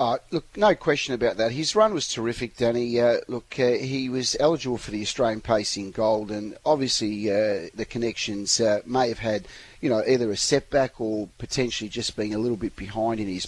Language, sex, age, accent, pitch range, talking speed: English, male, 40-59, Australian, 110-125 Hz, 205 wpm